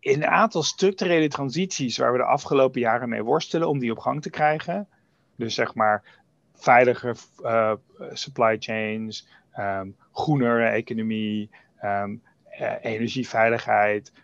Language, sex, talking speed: Dutch, male, 130 wpm